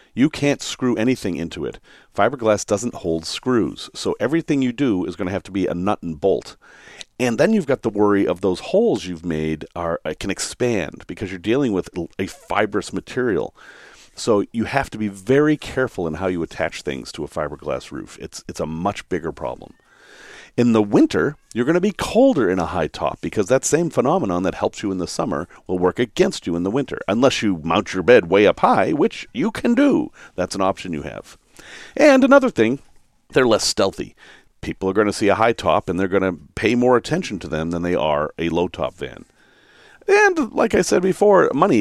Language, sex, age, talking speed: English, male, 40-59, 215 wpm